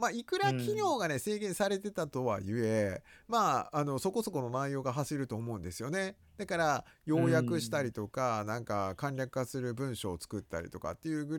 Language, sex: Japanese, male